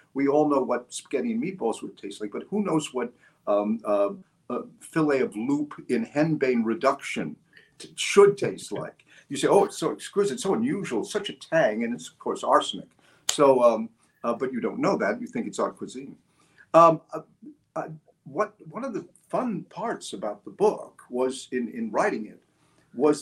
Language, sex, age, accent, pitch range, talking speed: English, male, 50-69, American, 135-200 Hz, 190 wpm